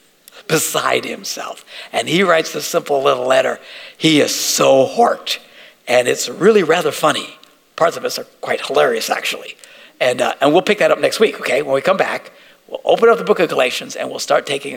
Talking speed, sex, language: 205 wpm, male, English